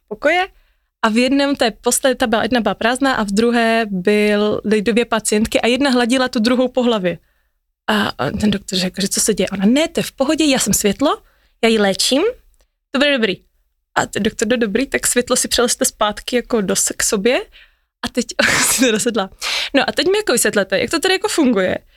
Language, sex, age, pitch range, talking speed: Slovak, female, 20-39, 210-270 Hz, 205 wpm